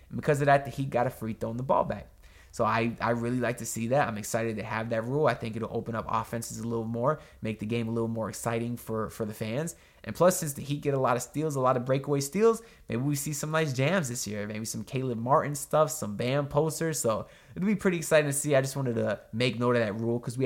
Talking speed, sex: 280 wpm, male